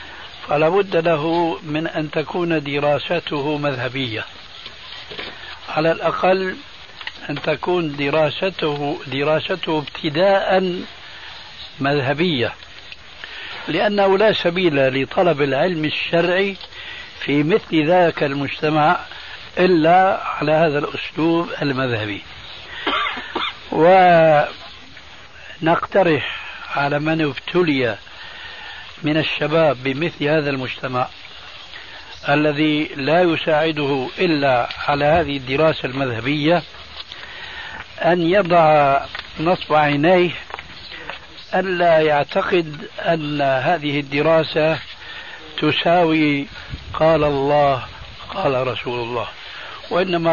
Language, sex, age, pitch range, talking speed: Arabic, male, 60-79, 140-170 Hz, 75 wpm